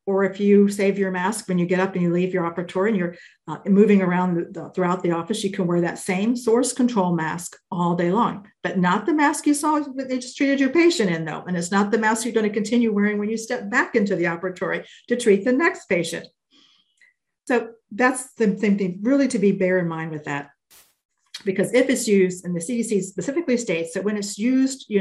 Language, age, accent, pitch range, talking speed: English, 50-69, American, 180-230 Hz, 235 wpm